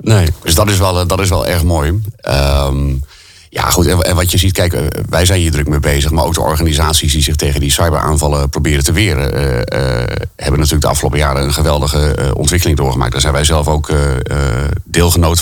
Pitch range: 70-80 Hz